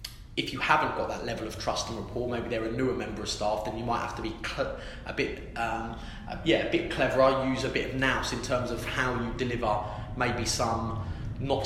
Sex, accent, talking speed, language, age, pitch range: male, British, 230 wpm, English, 20-39, 110-125 Hz